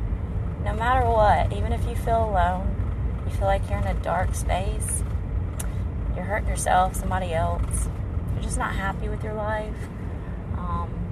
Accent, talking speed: American, 155 wpm